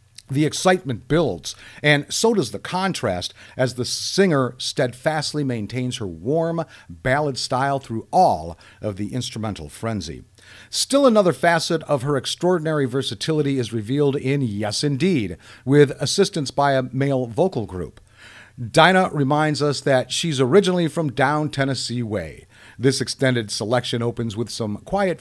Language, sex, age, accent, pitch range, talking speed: English, male, 50-69, American, 115-155 Hz, 140 wpm